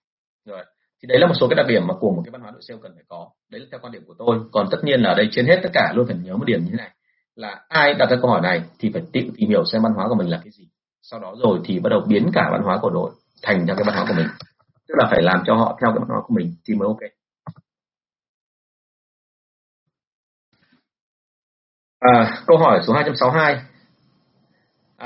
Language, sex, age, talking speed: Vietnamese, male, 30-49, 250 wpm